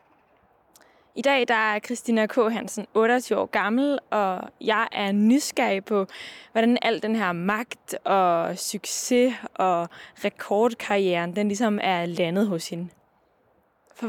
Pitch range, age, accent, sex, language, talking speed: 195-265 Hz, 20-39, native, female, Danish, 130 wpm